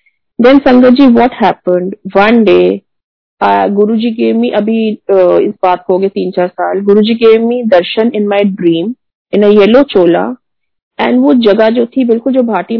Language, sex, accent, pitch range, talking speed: Hindi, female, native, 195-235 Hz, 185 wpm